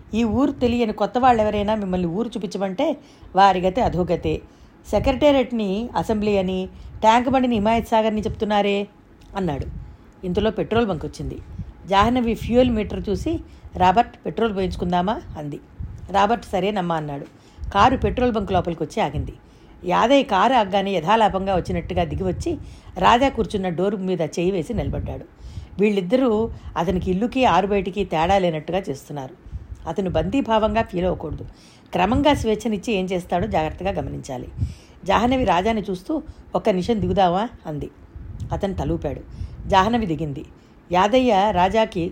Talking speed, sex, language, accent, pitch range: 120 wpm, female, Telugu, native, 175-225 Hz